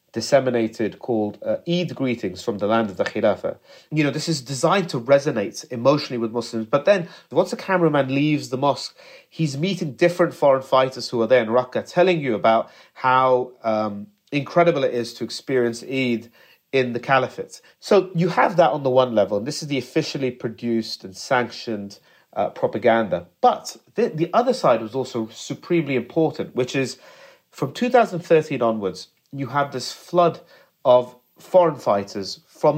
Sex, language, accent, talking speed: male, English, British, 170 wpm